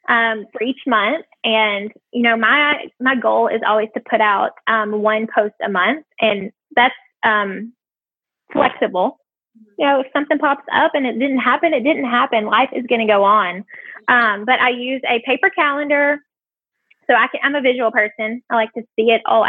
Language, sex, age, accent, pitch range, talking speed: English, female, 10-29, American, 220-285 Hz, 195 wpm